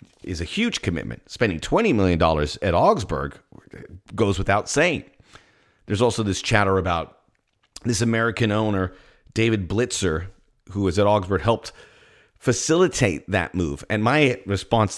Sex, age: male, 40-59